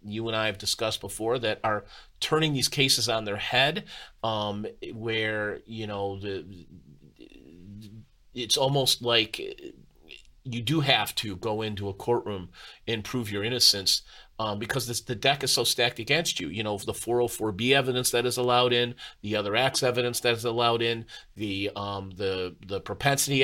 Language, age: English, 40-59